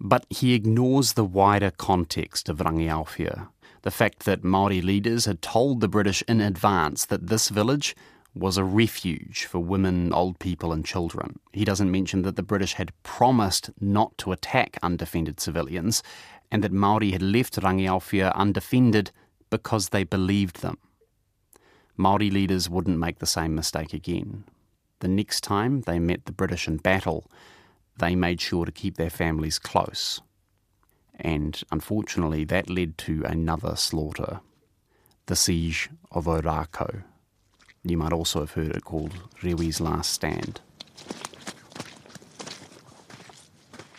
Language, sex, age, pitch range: English, male, 30-49, 85-100 Hz